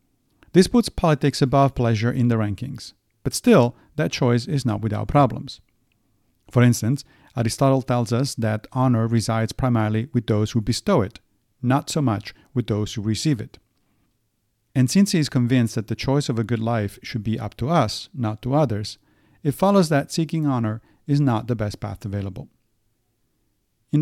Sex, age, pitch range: male, 40-59, 110-140 Hz